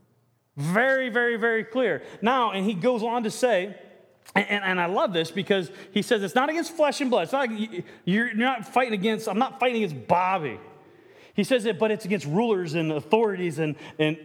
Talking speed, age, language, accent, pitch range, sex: 200 wpm, 40-59, English, American, 180-240 Hz, male